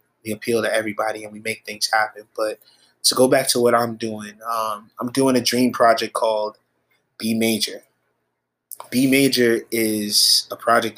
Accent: American